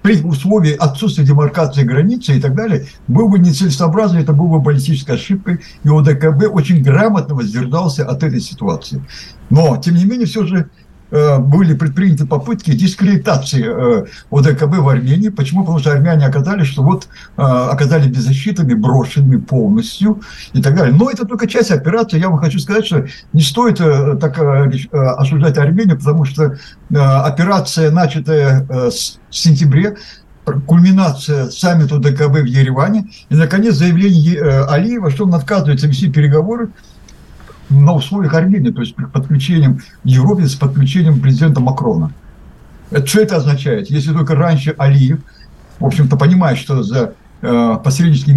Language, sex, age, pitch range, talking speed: Russian, male, 60-79, 135-175 Hz, 135 wpm